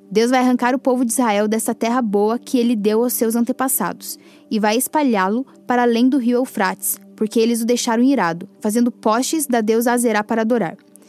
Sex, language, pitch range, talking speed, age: female, Portuguese, 210-255 Hz, 195 wpm, 10-29